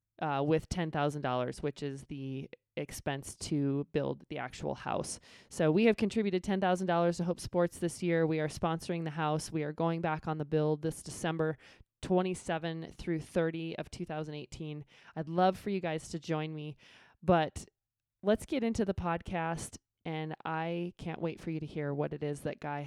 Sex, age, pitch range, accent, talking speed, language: male, 20-39, 145-170 Hz, American, 180 wpm, English